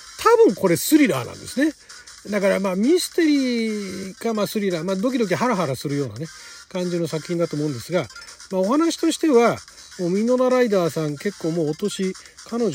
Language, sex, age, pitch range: Japanese, male, 40-59, 155-225 Hz